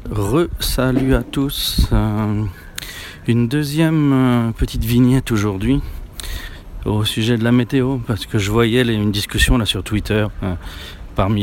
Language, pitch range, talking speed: French, 95-125 Hz, 135 wpm